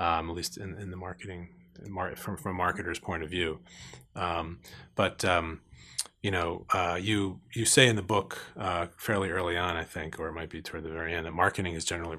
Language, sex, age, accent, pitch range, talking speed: English, male, 30-49, American, 85-95 Hz, 225 wpm